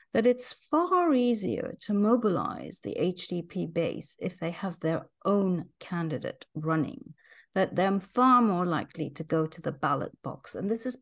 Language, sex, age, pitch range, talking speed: English, female, 40-59, 165-210 Hz, 165 wpm